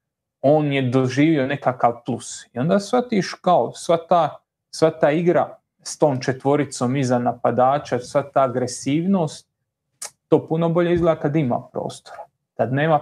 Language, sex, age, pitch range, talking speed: Croatian, male, 30-49, 130-180 Hz, 135 wpm